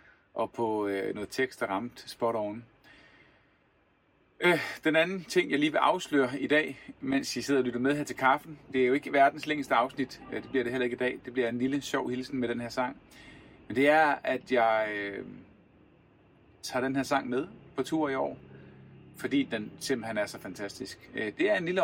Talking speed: 215 wpm